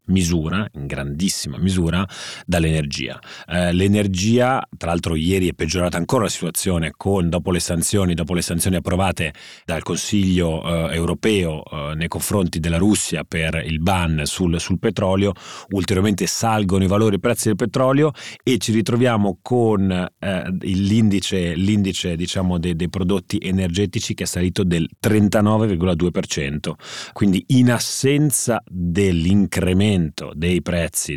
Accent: native